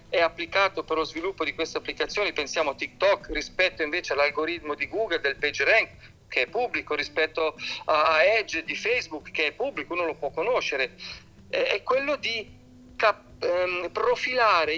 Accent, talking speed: native, 150 wpm